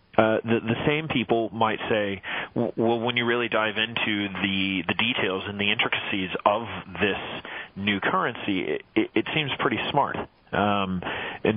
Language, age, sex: English, 40-59, male